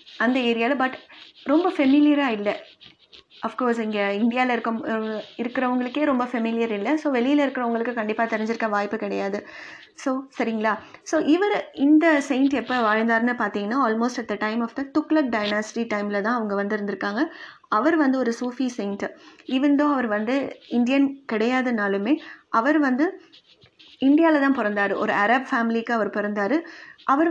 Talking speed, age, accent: 135 wpm, 20-39, native